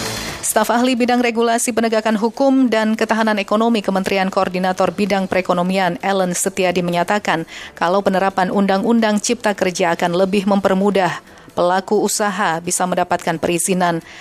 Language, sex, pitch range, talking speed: Indonesian, female, 180-220 Hz, 125 wpm